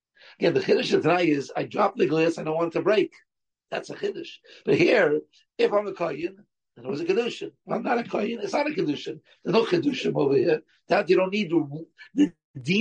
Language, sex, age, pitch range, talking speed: English, male, 60-79, 160-215 Hz, 230 wpm